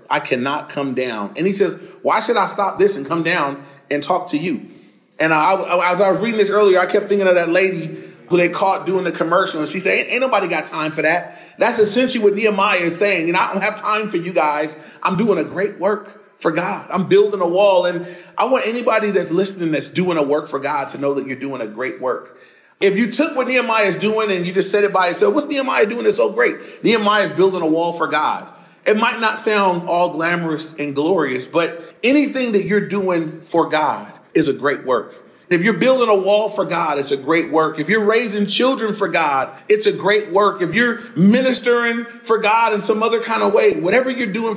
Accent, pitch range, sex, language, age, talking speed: American, 170-220 Hz, male, English, 30-49, 235 wpm